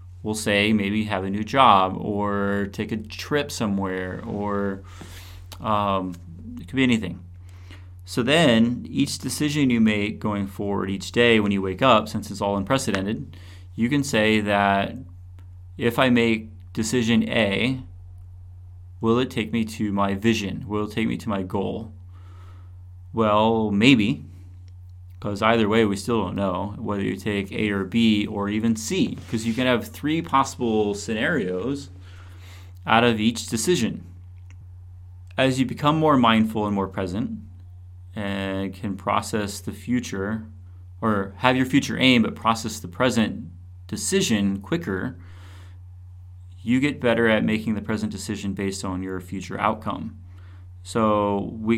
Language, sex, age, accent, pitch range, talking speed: English, male, 30-49, American, 90-115 Hz, 145 wpm